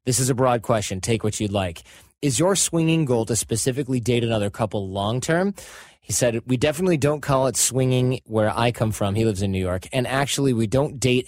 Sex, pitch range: male, 105-135 Hz